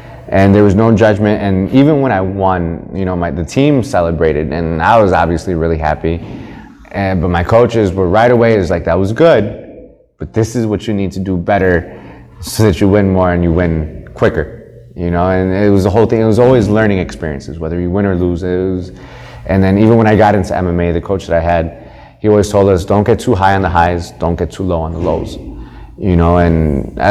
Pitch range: 90-105 Hz